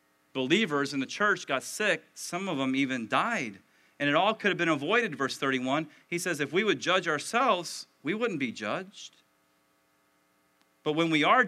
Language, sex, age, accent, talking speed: English, male, 40-59, American, 185 wpm